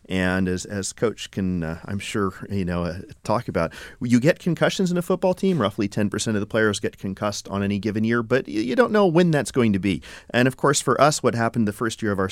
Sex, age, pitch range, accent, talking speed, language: male, 30-49, 95-125 Hz, American, 260 wpm, English